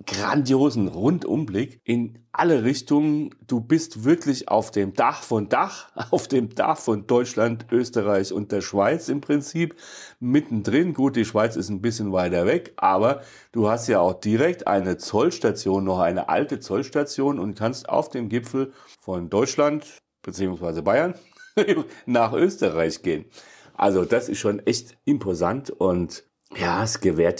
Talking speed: 145 wpm